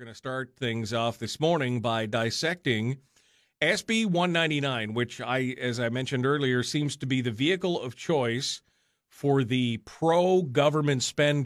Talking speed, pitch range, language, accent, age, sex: 145 wpm, 110-135 Hz, English, American, 40-59, male